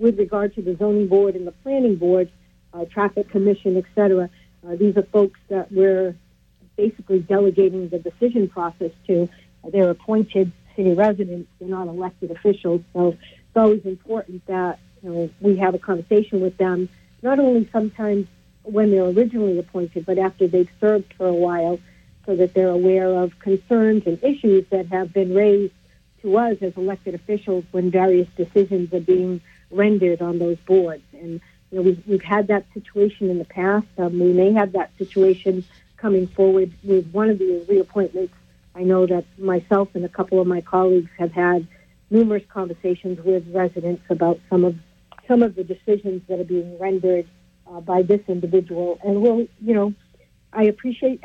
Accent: American